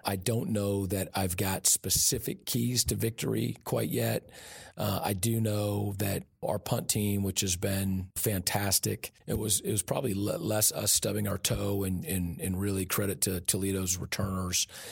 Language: English